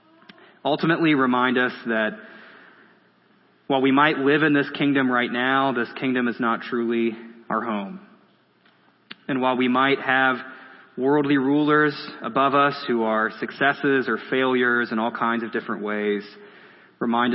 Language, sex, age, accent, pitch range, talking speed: English, male, 30-49, American, 115-140 Hz, 140 wpm